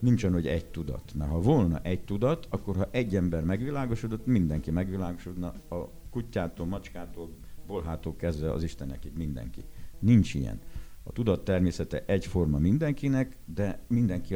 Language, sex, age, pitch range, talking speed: Hungarian, male, 60-79, 85-105 Hz, 140 wpm